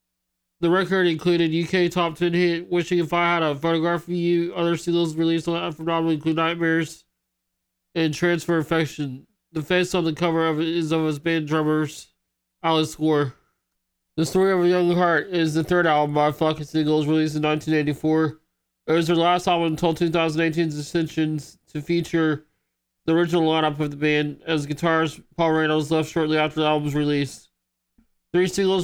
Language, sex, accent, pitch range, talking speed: English, male, American, 150-170 Hz, 175 wpm